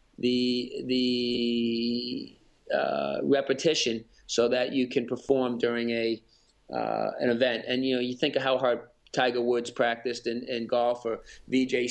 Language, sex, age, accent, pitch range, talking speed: English, male, 30-49, American, 120-130 Hz, 150 wpm